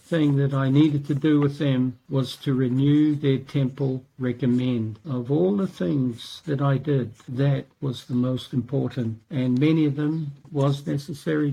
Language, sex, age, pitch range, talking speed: English, male, 60-79, 130-150 Hz, 165 wpm